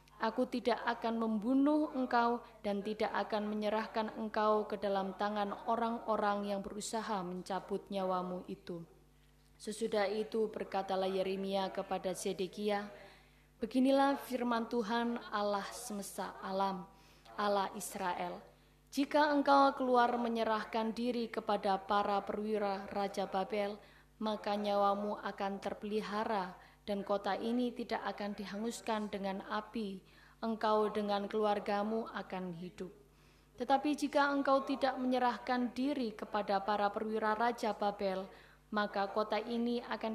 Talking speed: 110 wpm